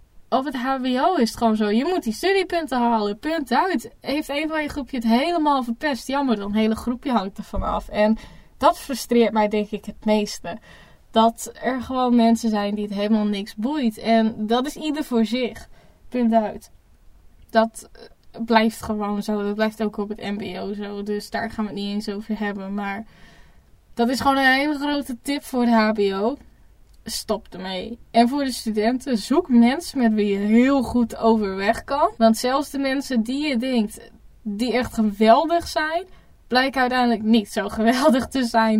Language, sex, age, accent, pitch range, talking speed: Dutch, female, 10-29, Dutch, 220-270 Hz, 185 wpm